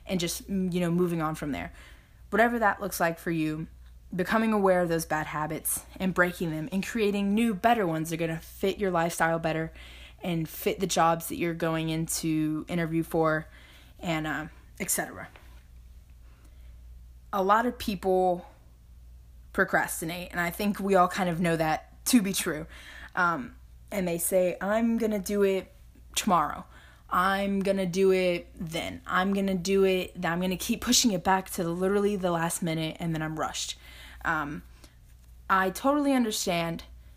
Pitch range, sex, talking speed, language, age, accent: 155-190 Hz, female, 170 wpm, English, 20-39, American